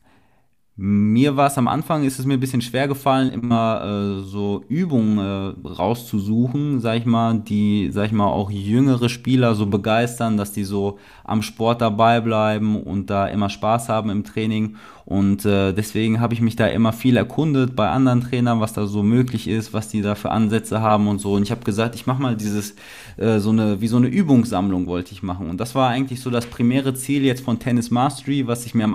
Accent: German